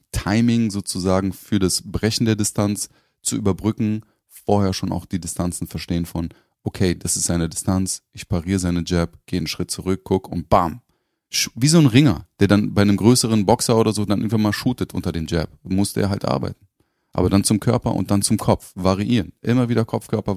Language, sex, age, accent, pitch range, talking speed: German, male, 30-49, German, 90-110 Hz, 195 wpm